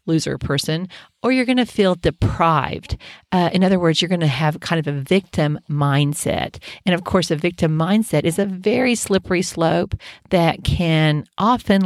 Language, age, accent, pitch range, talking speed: English, 40-59, American, 150-185 Hz, 175 wpm